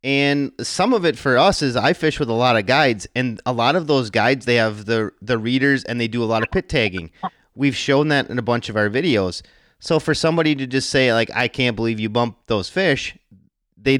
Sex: male